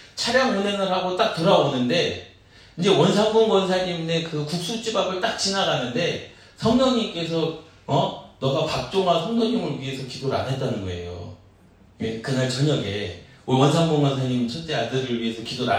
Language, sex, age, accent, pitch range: Korean, male, 40-59, native, 120-165 Hz